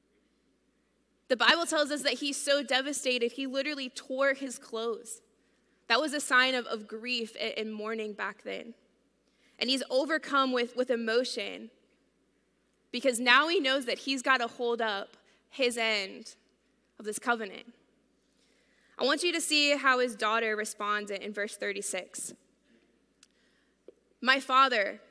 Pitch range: 220-265 Hz